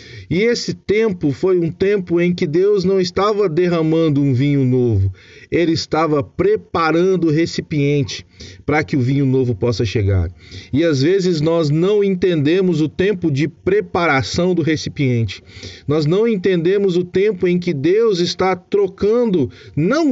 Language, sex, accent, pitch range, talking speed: Portuguese, male, Brazilian, 125-175 Hz, 150 wpm